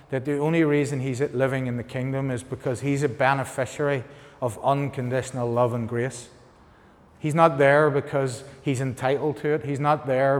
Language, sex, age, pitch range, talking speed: English, male, 30-49, 125-150 Hz, 175 wpm